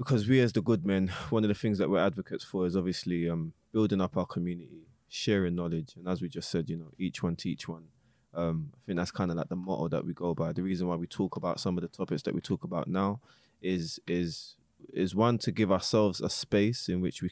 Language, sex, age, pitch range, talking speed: English, male, 20-39, 85-100 Hz, 260 wpm